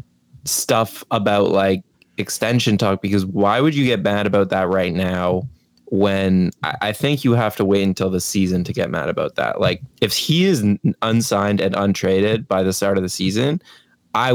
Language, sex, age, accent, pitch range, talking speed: English, male, 20-39, American, 95-105 Hz, 185 wpm